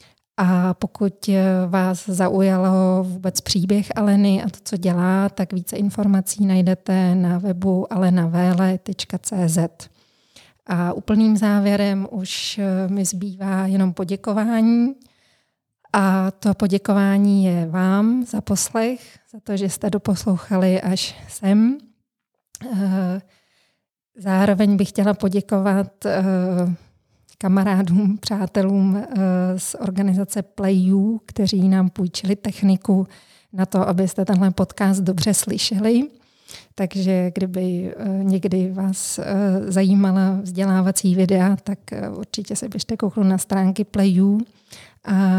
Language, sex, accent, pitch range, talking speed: Czech, female, native, 185-200 Hz, 100 wpm